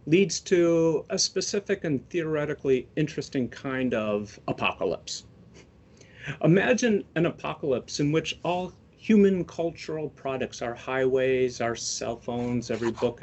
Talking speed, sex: 120 wpm, male